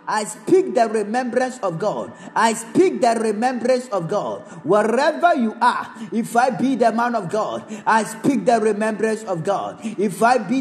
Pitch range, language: 205-245 Hz, Japanese